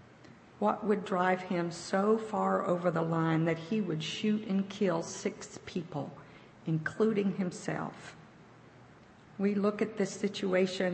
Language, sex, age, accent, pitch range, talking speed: English, female, 50-69, American, 165-205 Hz, 130 wpm